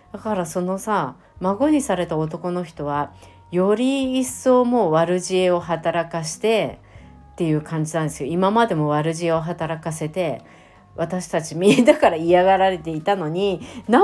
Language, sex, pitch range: Japanese, female, 160-200 Hz